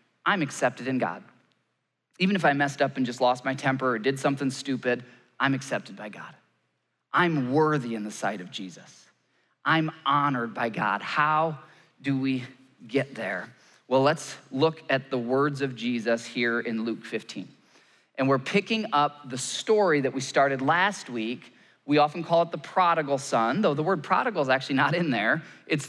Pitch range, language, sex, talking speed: 135-185 Hz, English, male, 180 wpm